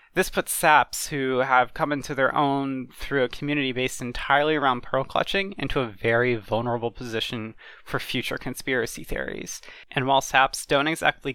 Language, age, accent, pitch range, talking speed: English, 20-39, American, 120-145 Hz, 165 wpm